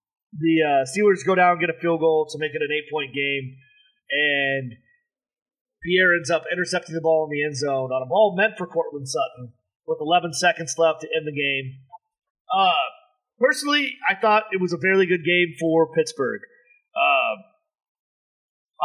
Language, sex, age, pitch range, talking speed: English, male, 30-49, 160-230 Hz, 175 wpm